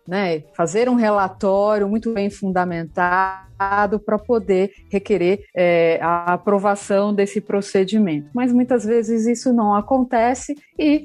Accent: Brazilian